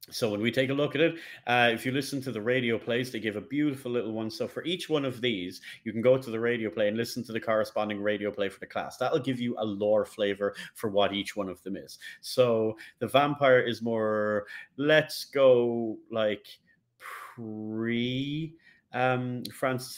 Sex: male